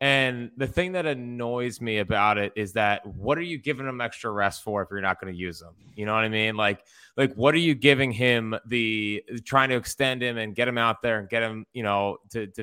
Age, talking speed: 20-39, 250 wpm